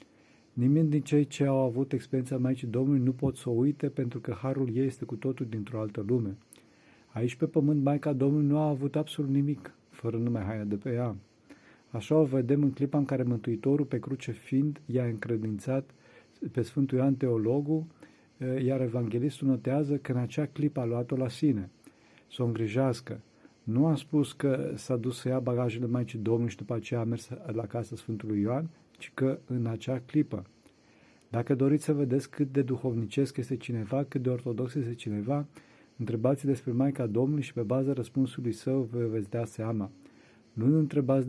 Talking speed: 180 wpm